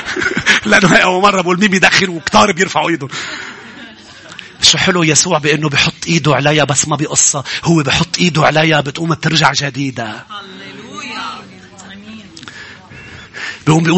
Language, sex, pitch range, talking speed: English, male, 125-155 Hz, 115 wpm